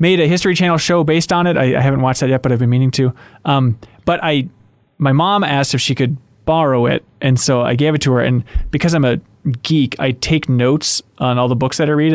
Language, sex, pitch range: English, male, 125-165 Hz